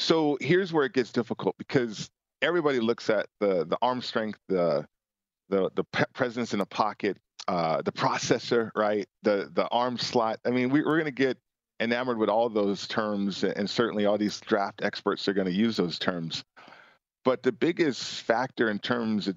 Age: 40-59